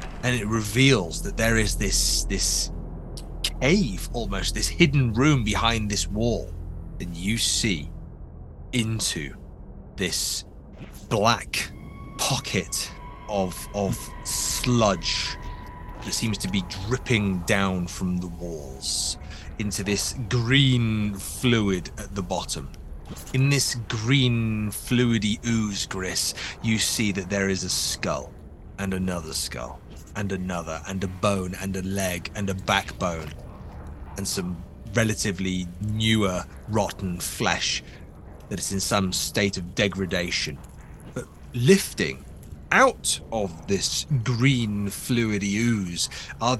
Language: English